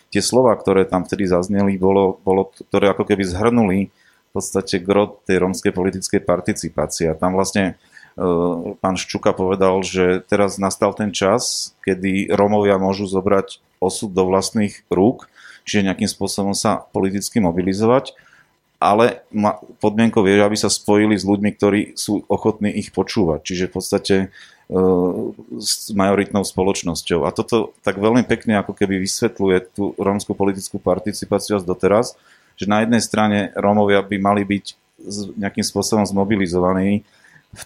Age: 30-49